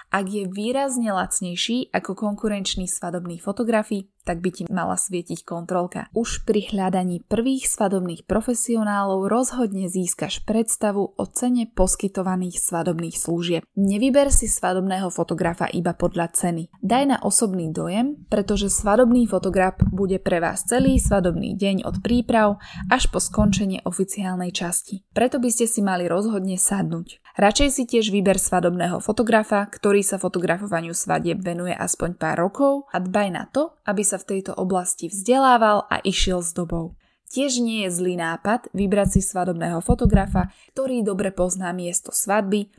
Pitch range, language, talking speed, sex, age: 180-215 Hz, Slovak, 145 wpm, female, 10-29